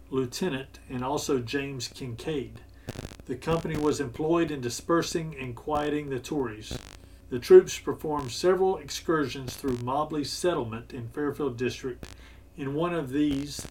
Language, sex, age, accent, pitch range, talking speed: English, male, 50-69, American, 120-150 Hz, 130 wpm